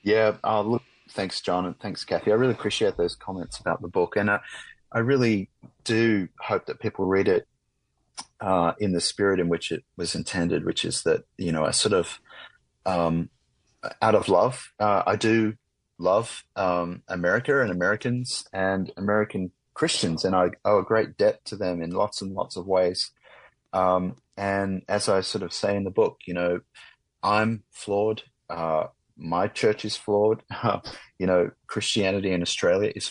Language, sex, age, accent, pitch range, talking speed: English, male, 30-49, Australian, 90-110 Hz, 180 wpm